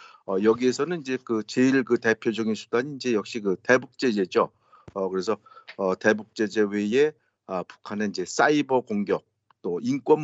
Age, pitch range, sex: 50-69, 110-145 Hz, male